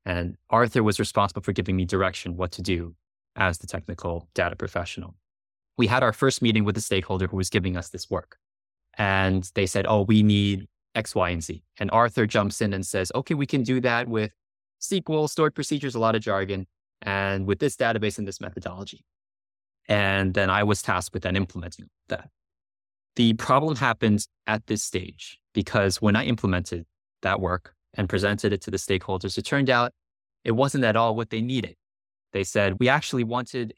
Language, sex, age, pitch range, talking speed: English, male, 20-39, 90-115 Hz, 190 wpm